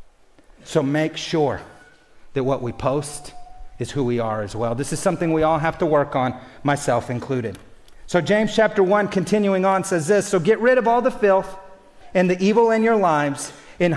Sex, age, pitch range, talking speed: male, 40-59, 155-225 Hz, 200 wpm